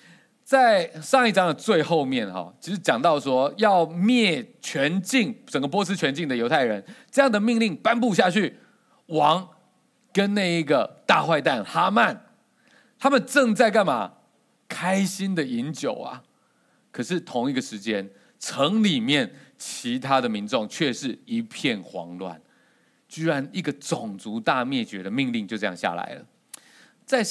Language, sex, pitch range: Chinese, male, 145-245 Hz